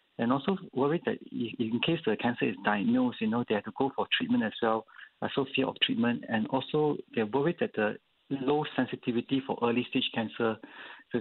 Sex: male